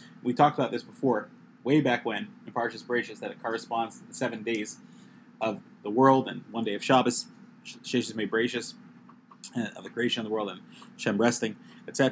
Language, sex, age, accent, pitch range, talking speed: English, male, 30-49, American, 120-150 Hz, 190 wpm